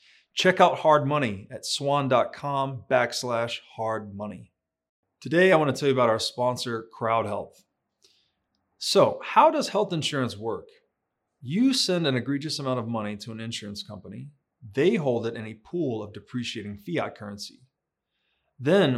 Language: English